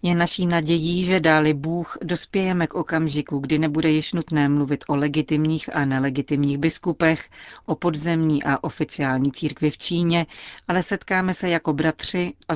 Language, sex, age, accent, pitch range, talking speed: Czech, female, 40-59, native, 145-165 Hz, 155 wpm